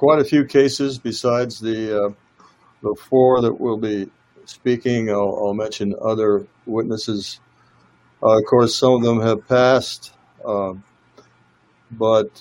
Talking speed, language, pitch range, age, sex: 135 wpm, English, 105-125 Hz, 60-79, male